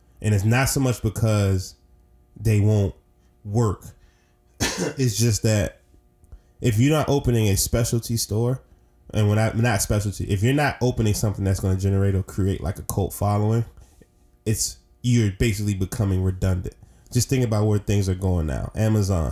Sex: male